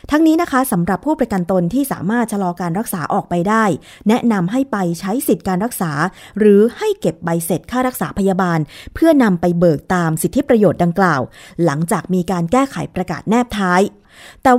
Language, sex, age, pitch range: Thai, female, 20-39, 180-240 Hz